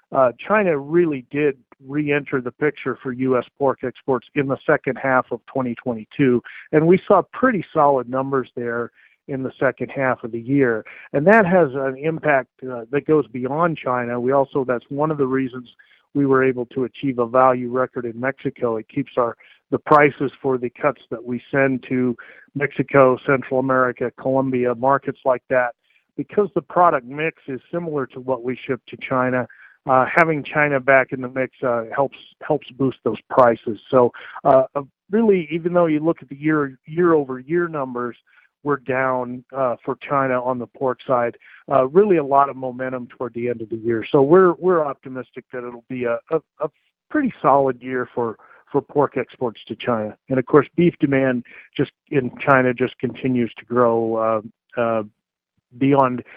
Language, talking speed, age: English, 185 wpm, 50-69